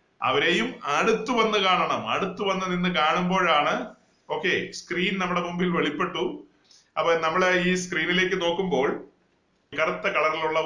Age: 30-49